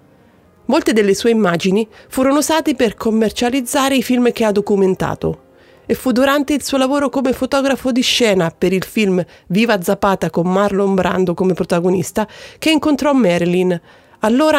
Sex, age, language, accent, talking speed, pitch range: female, 30-49, Italian, native, 150 wpm, 185-250 Hz